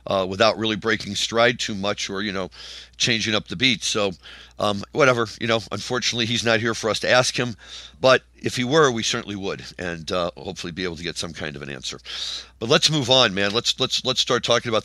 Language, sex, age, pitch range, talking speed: English, male, 50-69, 90-115 Hz, 235 wpm